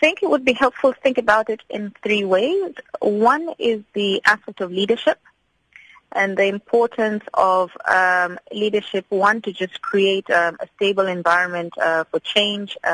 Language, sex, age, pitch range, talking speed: English, female, 20-39, 170-200 Hz, 165 wpm